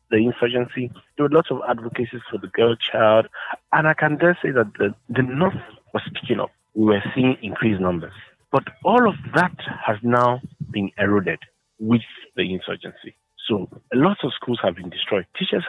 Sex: male